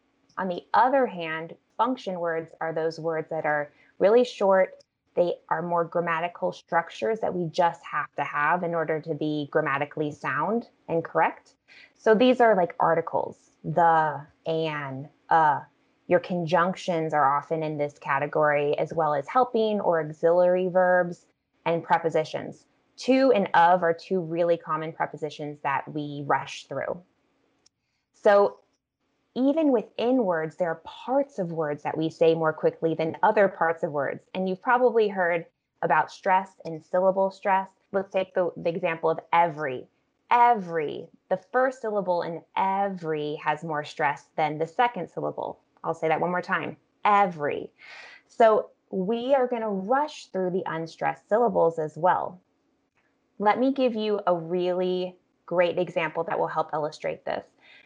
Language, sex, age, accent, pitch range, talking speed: English, female, 20-39, American, 160-205 Hz, 155 wpm